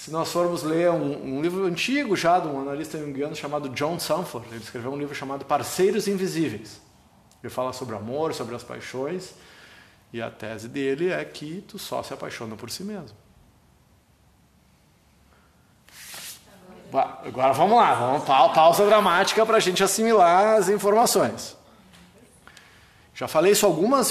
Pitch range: 135-220 Hz